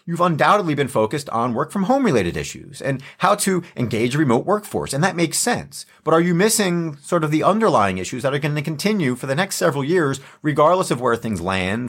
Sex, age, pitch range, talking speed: male, 30-49, 120-165 Hz, 210 wpm